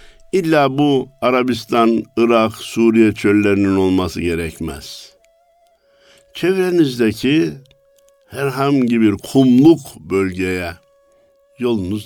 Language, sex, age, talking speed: Turkish, male, 60-79, 70 wpm